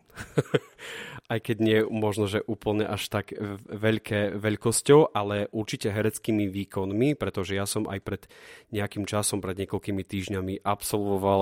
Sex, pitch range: male, 100-115 Hz